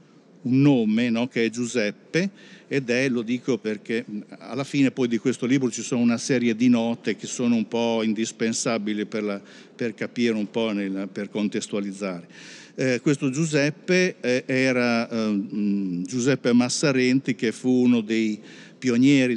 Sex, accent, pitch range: male, native, 110-135 Hz